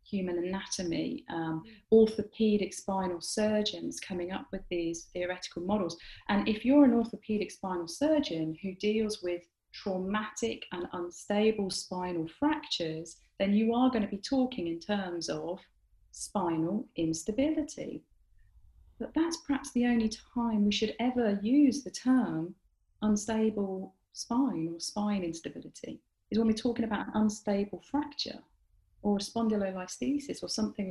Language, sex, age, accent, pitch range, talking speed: English, female, 40-59, British, 175-230 Hz, 130 wpm